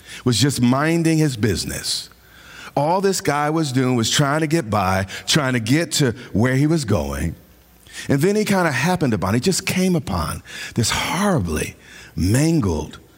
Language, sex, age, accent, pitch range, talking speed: English, male, 50-69, American, 95-155 Hz, 170 wpm